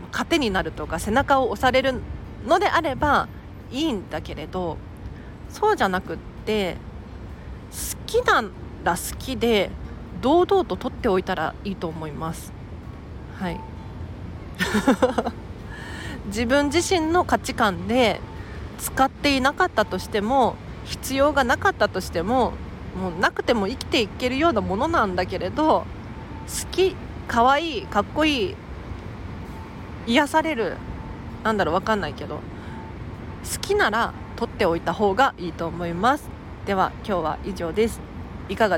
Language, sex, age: Japanese, female, 40-59